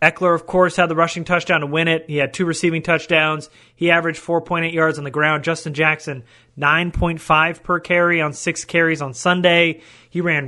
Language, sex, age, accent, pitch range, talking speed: English, male, 30-49, American, 155-180 Hz, 195 wpm